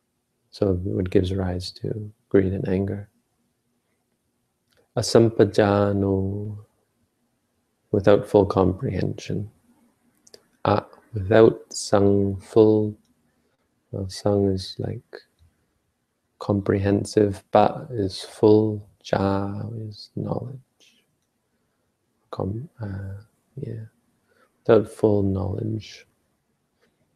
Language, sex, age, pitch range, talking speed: English, male, 30-49, 95-110 Hz, 70 wpm